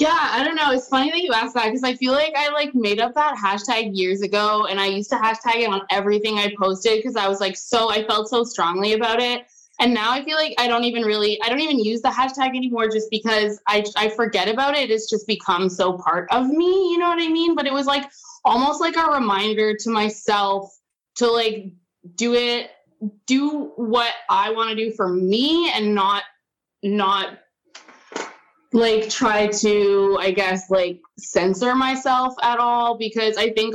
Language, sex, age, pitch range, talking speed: English, female, 20-39, 200-245 Hz, 205 wpm